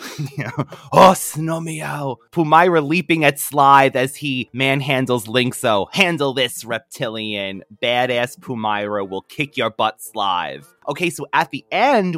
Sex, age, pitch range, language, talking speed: male, 30-49, 115-170 Hz, English, 125 wpm